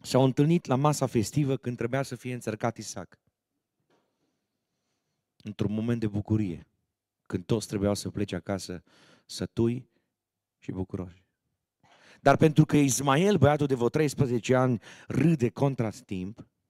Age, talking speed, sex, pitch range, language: 30-49, 130 wpm, male, 90-115 Hz, Romanian